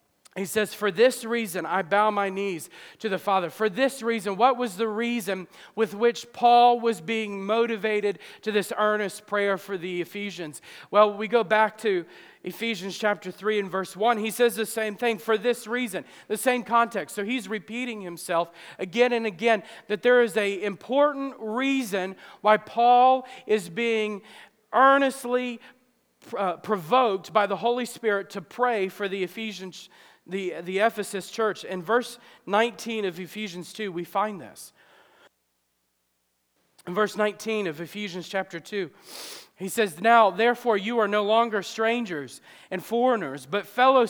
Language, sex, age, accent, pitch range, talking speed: English, male, 40-59, American, 190-235 Hz, 155 wpm